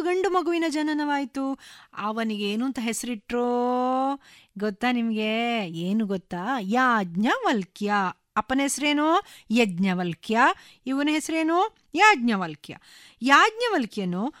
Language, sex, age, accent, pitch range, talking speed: Kannada, female, 30-49, native, 210-295 Hz, 75 wpm